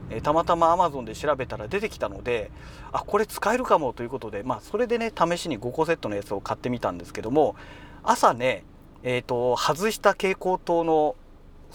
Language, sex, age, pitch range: Japanese, male, 40-59, 125-185 Hz